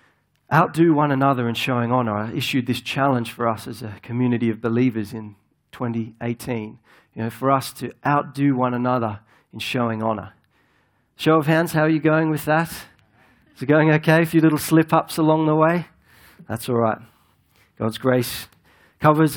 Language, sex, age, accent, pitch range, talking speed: English, male, 40-59, Australian, 120-155 Hz, 175 wpm